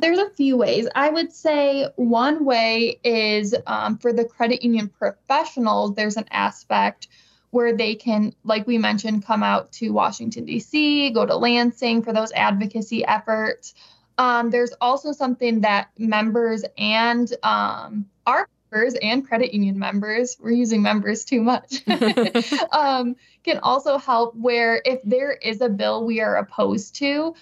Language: English